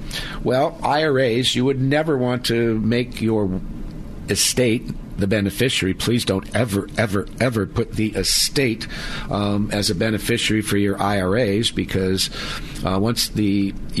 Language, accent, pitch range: English, American, 100-120 Hz